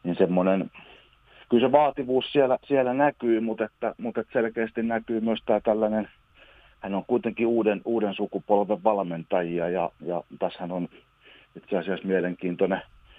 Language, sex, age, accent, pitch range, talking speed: Finnish, male, 40-59, native, 90-120 Hz, 140 wpm